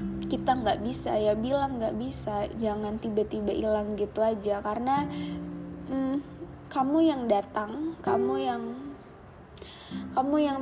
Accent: native